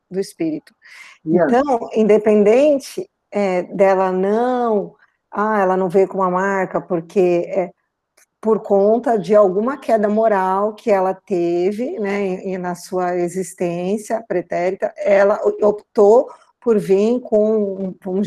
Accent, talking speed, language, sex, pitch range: Brazilian, 120 wpm, Portuguese, female, 195-235 Hz